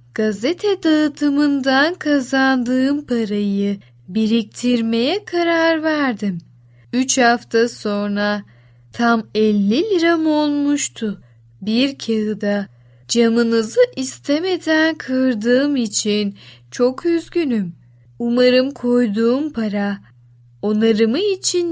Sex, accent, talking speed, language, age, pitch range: female, native, 75 wpm, Turkish, 10-29, 205-280 Hz